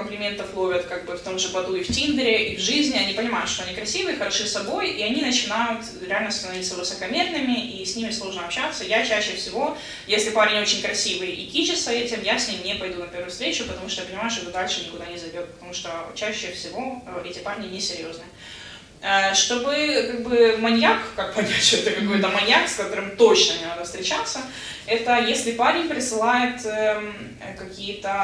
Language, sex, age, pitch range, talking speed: Ukrainian, female, 20-39, 190-240 Hz, 185 wpm